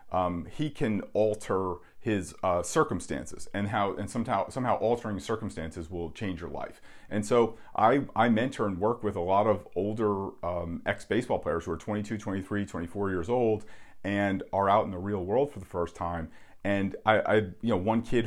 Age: 40-59